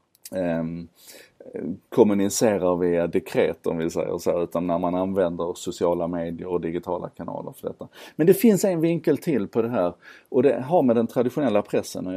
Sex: male